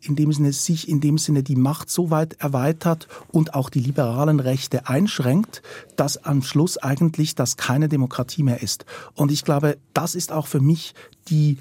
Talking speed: 185 wpm